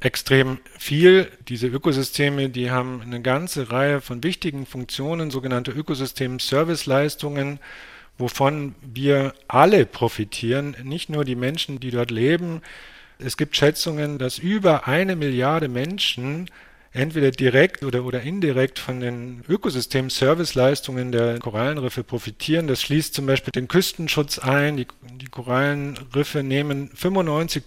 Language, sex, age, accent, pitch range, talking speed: German, male, 50-69, German, 125-155 Hz, 120 wpm